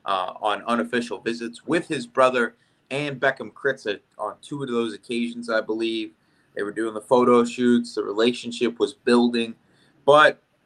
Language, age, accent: English, 20-39, American